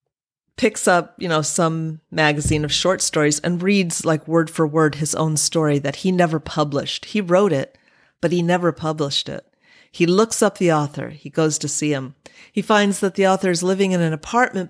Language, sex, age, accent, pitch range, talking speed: English, female, 40-59, American, 150-195 Hz, 205 wpm